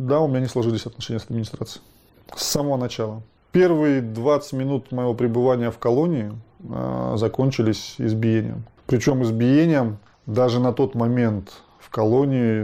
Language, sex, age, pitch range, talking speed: Russian, male, 20-39, 110-135 Hz, 140 wpm